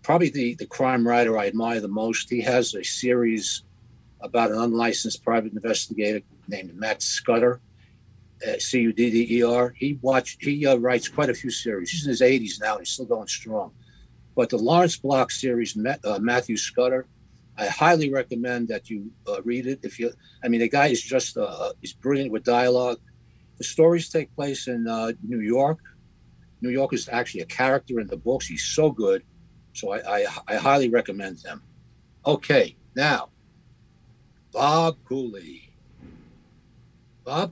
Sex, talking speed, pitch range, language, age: male, 165 wpm, 115-135 Hz, English, 60-79